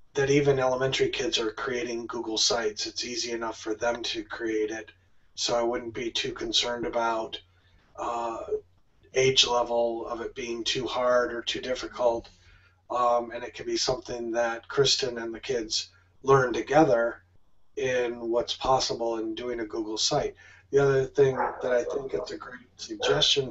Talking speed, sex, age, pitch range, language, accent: 165 wpm, male, 40-59, 115-135 Hz, English, American